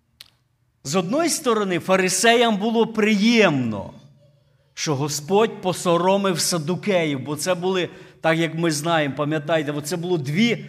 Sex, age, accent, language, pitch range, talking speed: male, 50-69, native, Ukrainian, 155-220 Hz, 125 wpm